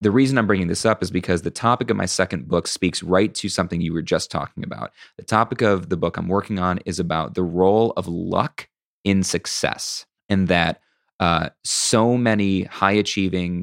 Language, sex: English, male